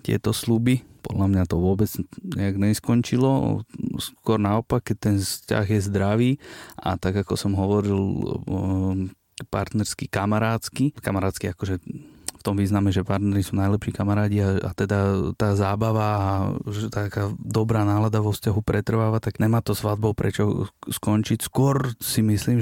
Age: 30-49